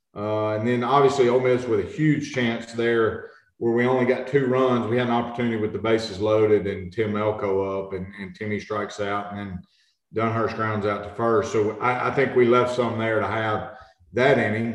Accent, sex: American, male